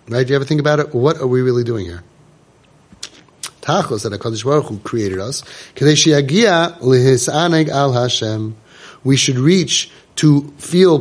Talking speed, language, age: 165 wpm, English, 30-49